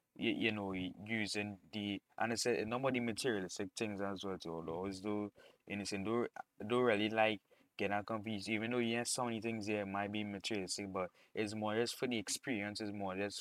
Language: English